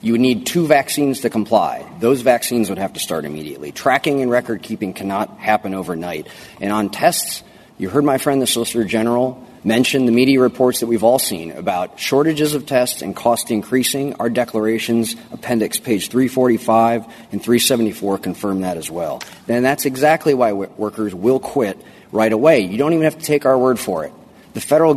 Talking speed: 185 wpm